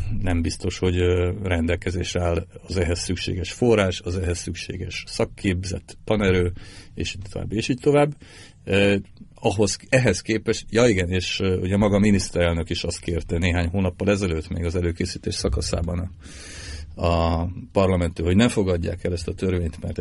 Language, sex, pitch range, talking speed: Hungarian, male, 85-100 Hz, 140 wpm